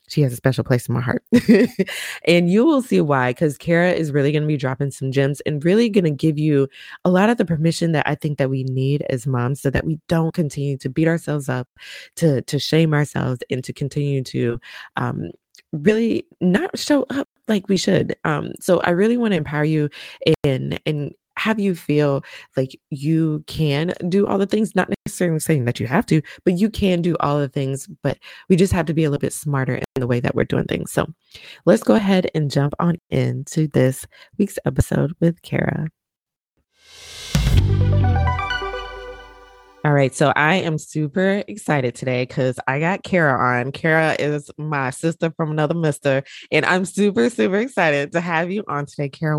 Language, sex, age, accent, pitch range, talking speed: English, female, 20-39, American, 135-180 Hz, 195 wpm